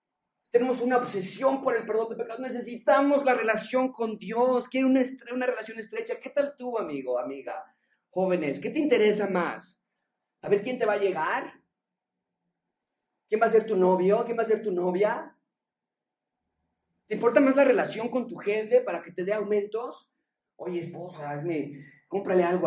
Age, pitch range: 40-59, 190-260 Hz